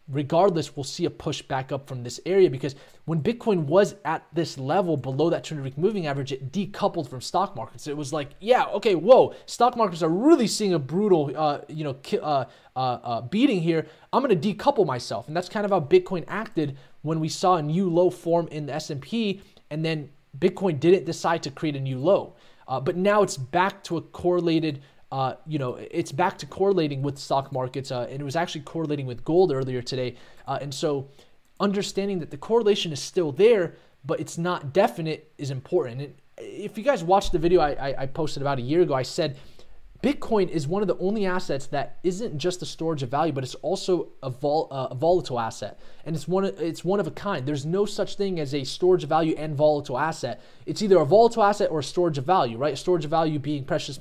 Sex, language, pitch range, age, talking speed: male, English, 140-185 Hz, 20-39, 220 wpm